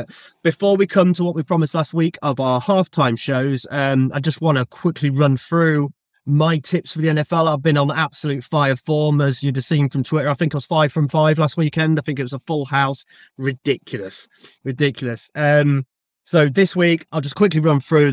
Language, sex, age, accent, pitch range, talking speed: English, male, 20-39, British, 130-165 Hz, 215 wpm